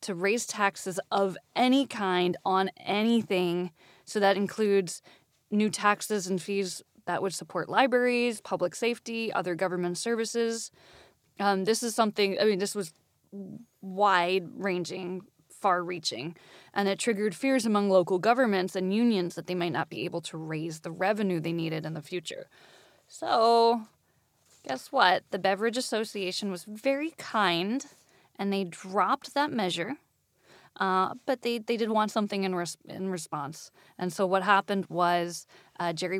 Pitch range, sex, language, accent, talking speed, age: 175-215 Hz, female, English, American, 150 wpm, 10-29